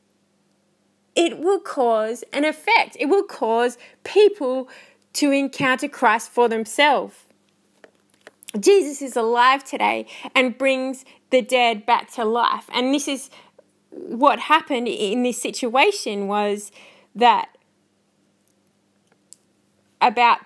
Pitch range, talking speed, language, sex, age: 225-290 Hz, 105 wpm, English, female, 20-39